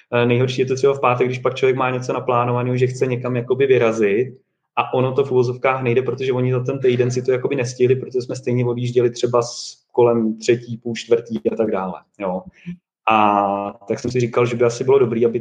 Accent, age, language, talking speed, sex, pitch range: native, 30-49, Czech, 215 wpm, male, 120-130 Hz